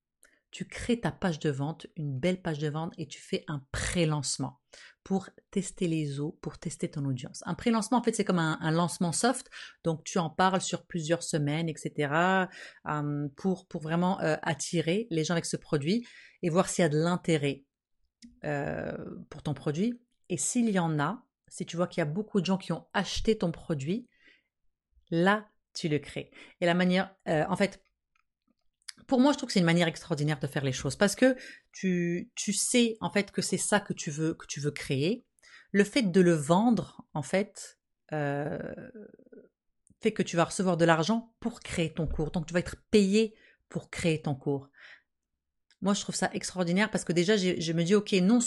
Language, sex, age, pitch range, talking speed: French, female, 30-49, 160-205 Hz, 200 wpm